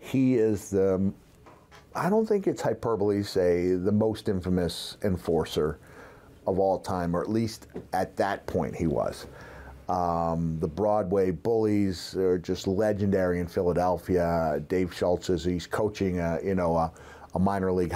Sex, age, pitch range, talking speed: male, 40-59, 85-100 Hz, 145 wpm